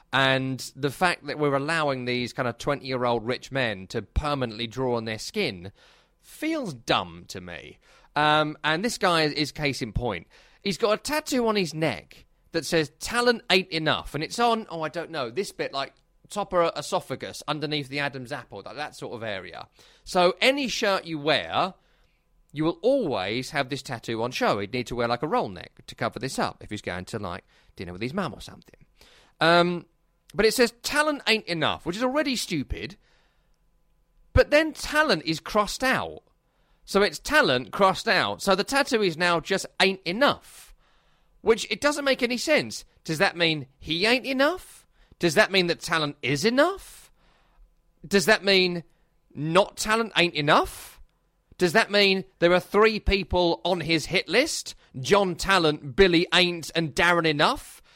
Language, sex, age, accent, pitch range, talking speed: English, male, 30-49, British, 140-200 Hz, 180 wpm